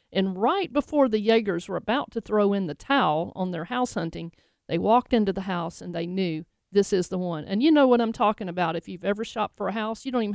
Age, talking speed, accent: 50-69, 260 wpm, American